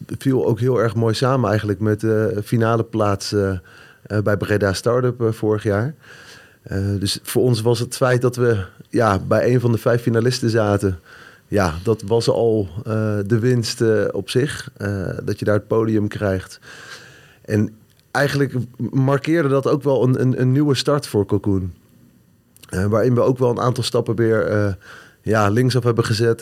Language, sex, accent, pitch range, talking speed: Dutch, male, Dutch, 105-125 Hz, 175 wpm